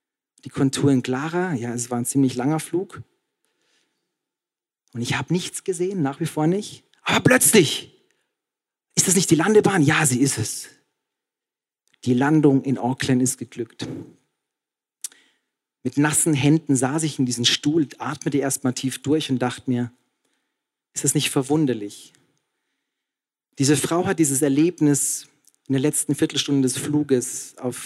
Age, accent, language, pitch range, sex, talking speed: 40-59, German, German, 135-160 Hz, male, 145 wpm